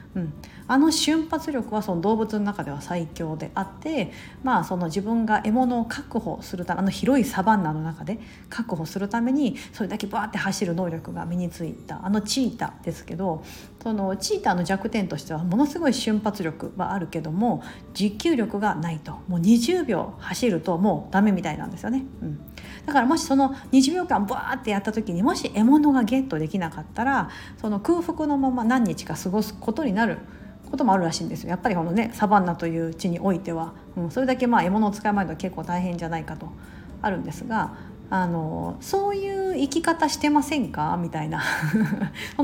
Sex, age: female, 40-59